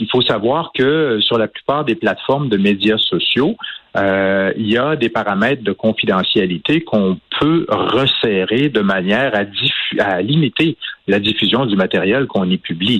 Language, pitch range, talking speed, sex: French, 95-125 Hz, 165 wpm, male